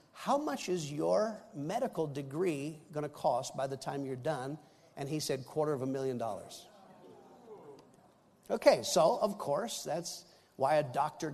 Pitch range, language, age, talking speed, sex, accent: 150-240 Hz, English, 50-69, 160 wpm, male, American